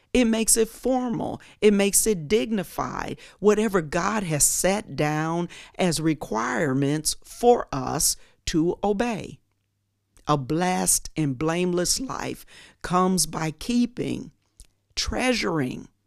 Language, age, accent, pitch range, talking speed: English, 50-69, American, 130-200 Hz, 105 wpm